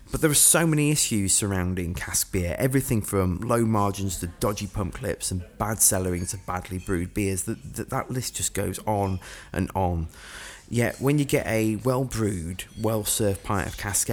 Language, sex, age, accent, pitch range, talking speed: English, male, 20-39, British, 95-115 Hz, 185 wpm